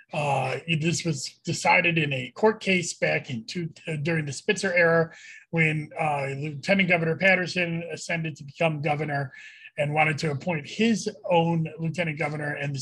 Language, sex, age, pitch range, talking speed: English, male, 30-49, 155-205 Hz, 165 wpm